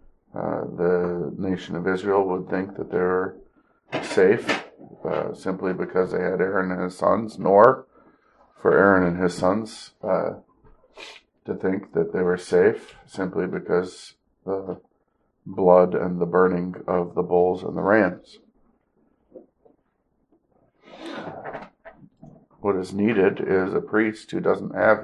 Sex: male